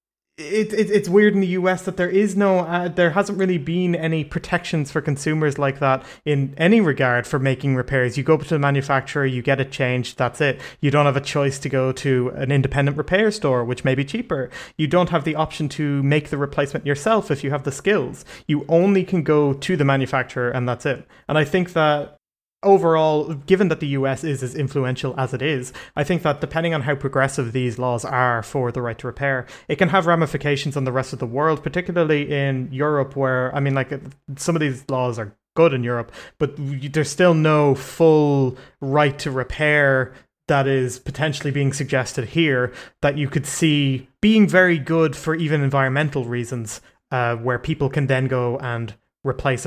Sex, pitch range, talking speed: male, 130-160 Hz, 205 wpm